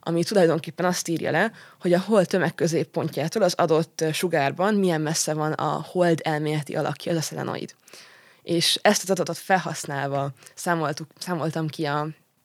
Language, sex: Hungarian, female